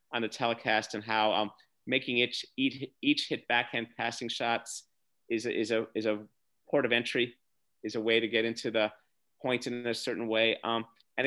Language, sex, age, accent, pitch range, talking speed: English, male, 30-49, American, 110-140 Hz, 200 wpm